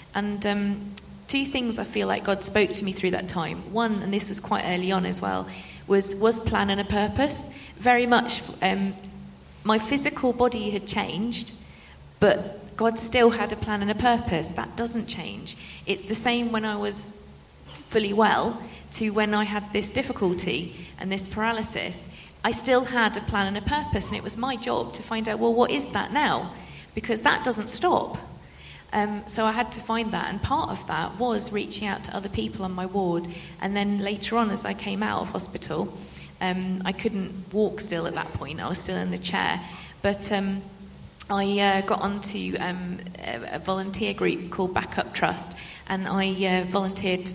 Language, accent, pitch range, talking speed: English, British, 190-230 Hz, 195 wpm